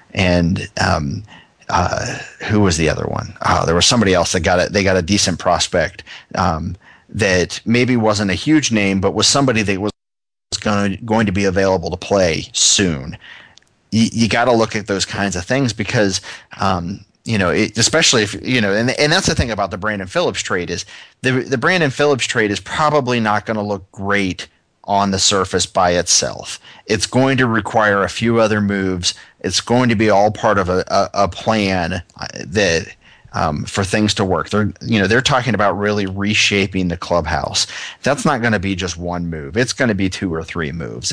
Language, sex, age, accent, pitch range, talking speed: English, male, 30-49, American, 90-110 Hz, 205 wpm